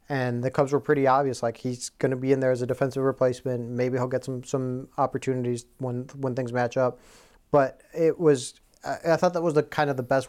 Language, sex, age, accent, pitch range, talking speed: English, male, 30-49, American, 125-140 Hz, 235 wpm